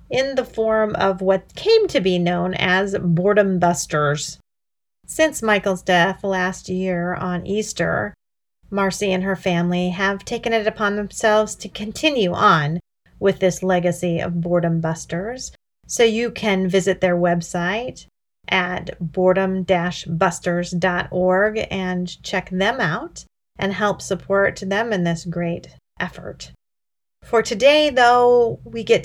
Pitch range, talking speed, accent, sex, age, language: 175-240 Hz, 130 wpm, American, female, 40-59, English